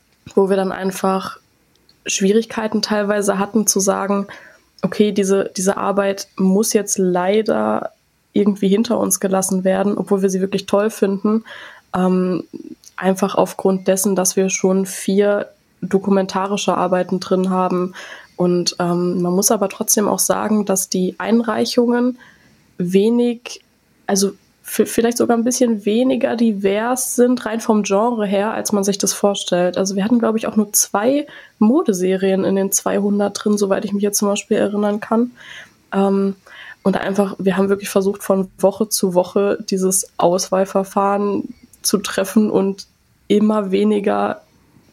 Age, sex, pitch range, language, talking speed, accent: 20-39, female, 190-215 Hz, German, 145 wpm, German